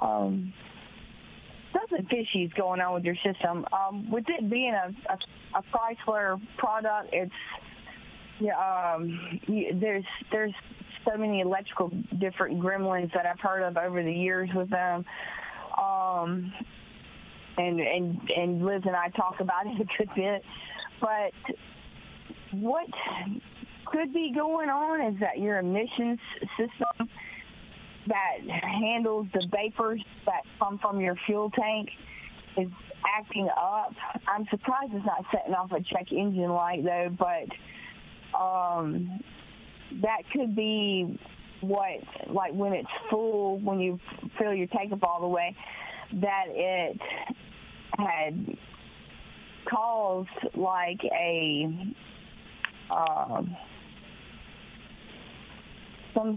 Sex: female